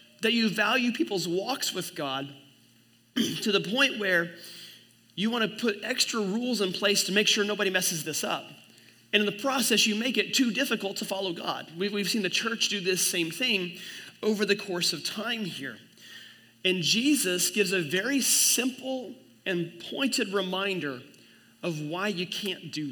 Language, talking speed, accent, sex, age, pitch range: English, 175 wpm, American, male, 30-49, 170-210 Hz